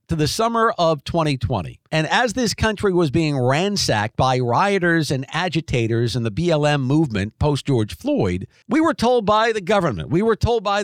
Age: 50-69